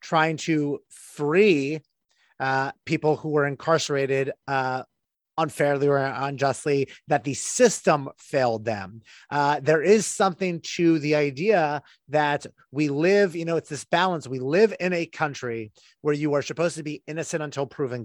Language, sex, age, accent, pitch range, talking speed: English, male, 30-49, American, 135-160 Hz, 155 wpm